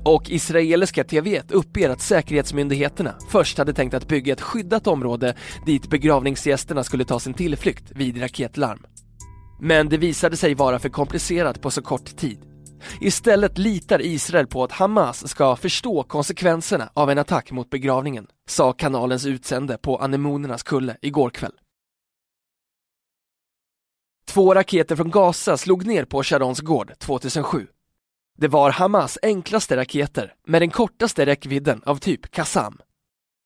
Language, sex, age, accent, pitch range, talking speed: Swedish, male, 20-39, native, 135-170 Hz, 140 wpm